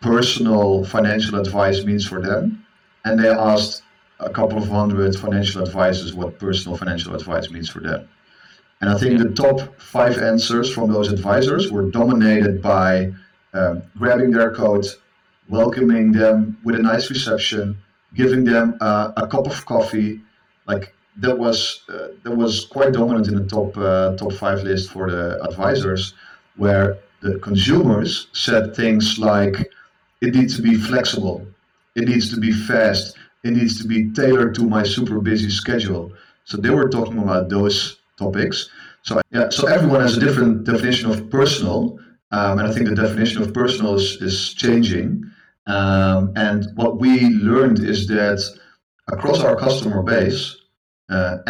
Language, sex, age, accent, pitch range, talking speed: English, male, 40-59, Dutch, 100-115 Hz, 160 wpm